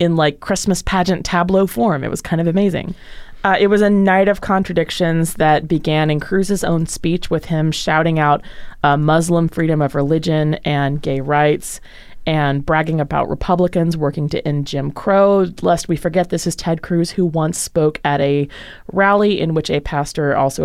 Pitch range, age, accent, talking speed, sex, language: 150-190 Hz, 20-39, American, 185 wpm, female, English